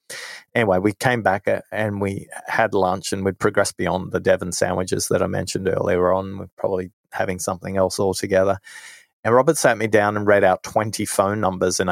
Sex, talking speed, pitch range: male, 190 wpm, 95-115 Hz